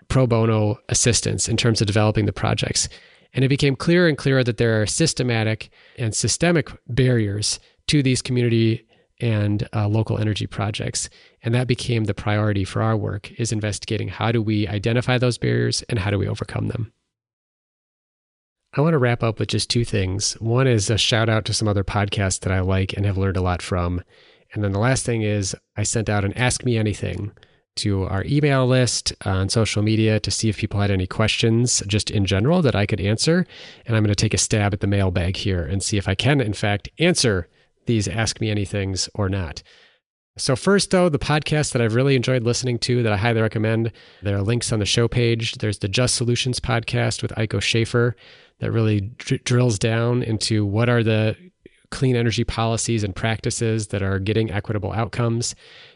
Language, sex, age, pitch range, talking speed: English, male, 30-49, 105-120 Hz, 200 wpm